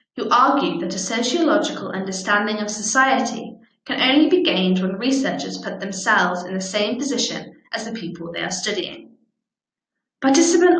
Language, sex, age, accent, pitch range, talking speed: English, female, 20-39, British, 190-270 Hz, 150 wpm